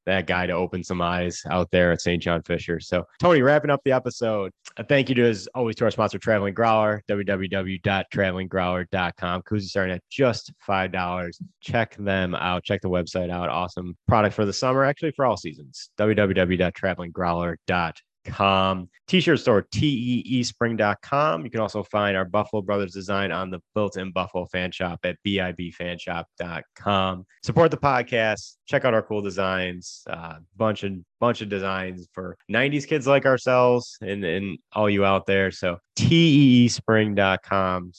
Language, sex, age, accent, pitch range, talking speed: English, male, 30-49, American, 90-115 Hz, 160 wpm